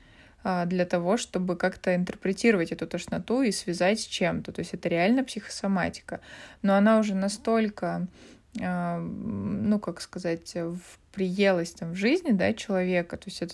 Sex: female